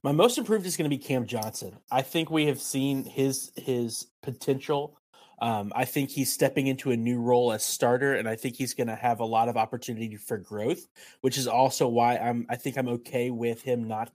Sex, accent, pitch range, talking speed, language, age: male, American, 120-140 Hz, 220 wpm, English, 20-39